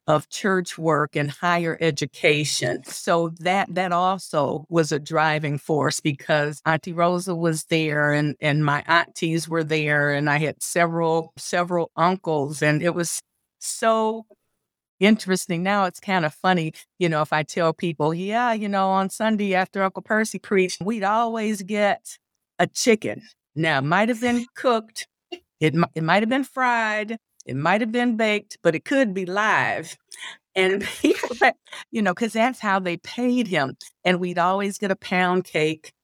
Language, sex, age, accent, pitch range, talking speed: English, female, 50-69, American, 155-200 Hz, 165 wpm